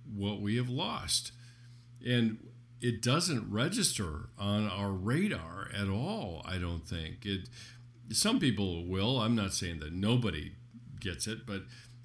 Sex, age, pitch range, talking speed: male, 50-69, 100-120 Hz, 140 wpm